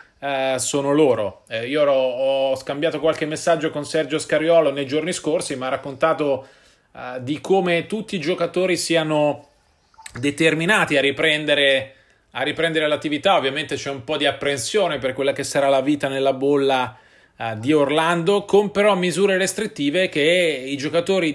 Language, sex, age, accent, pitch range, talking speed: Italian, male, 30-49, native, 135-170 Hz, 140 wpm